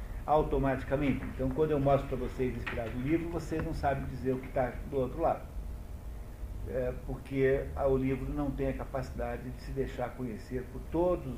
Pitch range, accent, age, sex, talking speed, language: 115-135 Hz, Brazilian, 60-79, male, 180 wpm, Portuguese